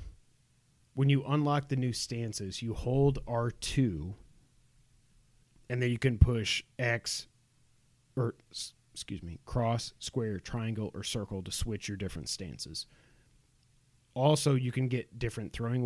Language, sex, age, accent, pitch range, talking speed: English, male, 30-49, American, 105-130 Hz, 130 wpm